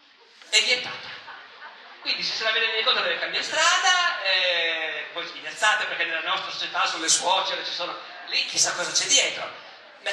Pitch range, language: 170-255 Hz, Italian